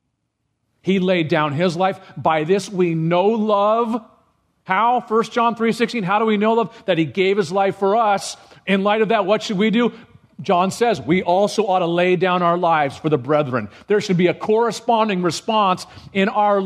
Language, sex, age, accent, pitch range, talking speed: English, male, 40-59, American, 170-220 Hz, 200 wpm